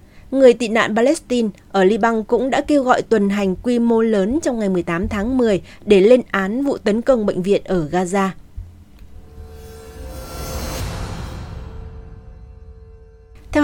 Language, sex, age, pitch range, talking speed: Vietnamese, female, 20-39, 170-245 Hz, 135 wpm